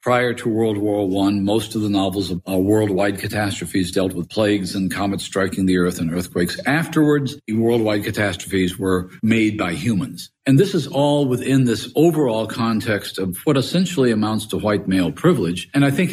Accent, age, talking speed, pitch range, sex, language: American, 50-69, 185 wpm, 100-130 Hz, male, Finnish